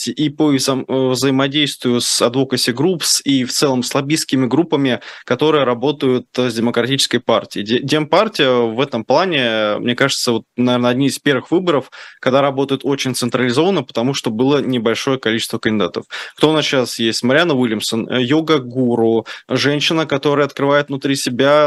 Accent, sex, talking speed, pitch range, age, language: native, male, 140 wpm, 120-140 Hz, 20-39, Russian